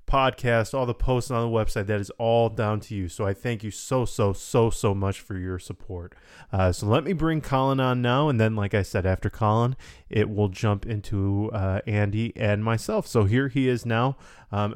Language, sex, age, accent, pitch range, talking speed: English, male, 20-39, American, 100-115 Hz, 220 wpm